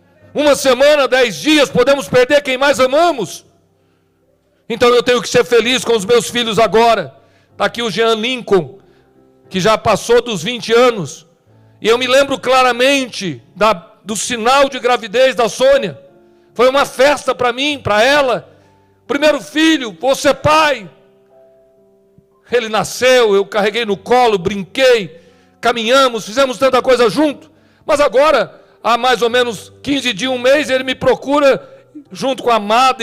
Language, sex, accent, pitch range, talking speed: Portuguese, male, Brazilian, 210-270 Hz, 150 wpm